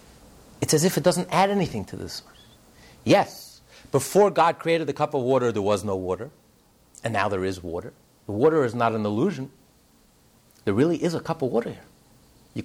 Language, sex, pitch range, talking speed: English, male, 115-190 Hz, 195 wpm